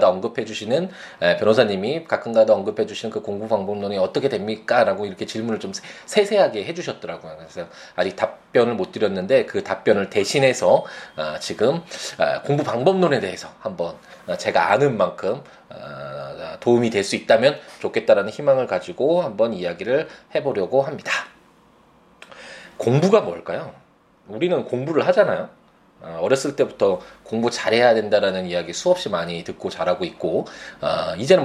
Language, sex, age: Korean, male, 20-39